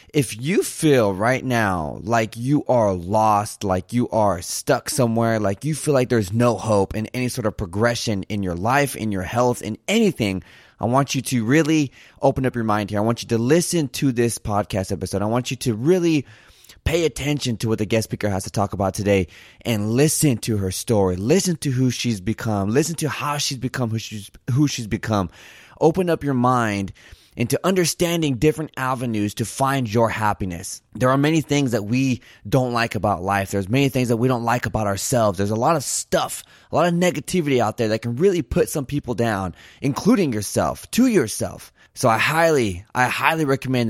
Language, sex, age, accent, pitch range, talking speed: English, male, 20-39, American, 105-140 Hz, 205 wpm